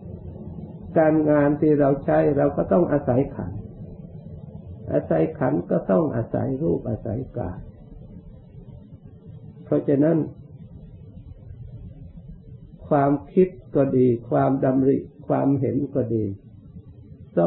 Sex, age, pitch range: male, 60-79, 115-145 Hz